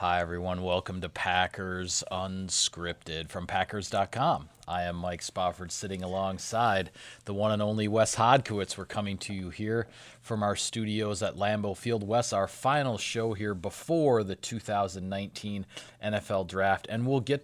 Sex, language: male, English